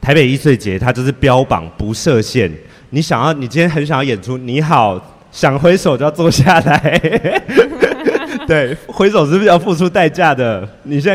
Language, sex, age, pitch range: Chinese, male, 30-49, 100-150 Hz